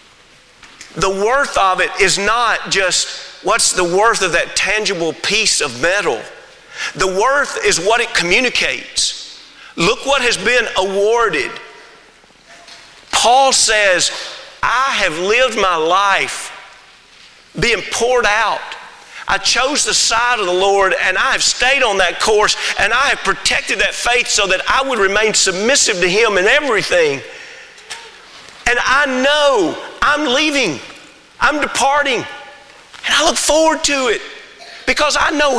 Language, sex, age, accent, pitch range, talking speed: English, male, 40-59, American, 190-300 Hz, 140 wpm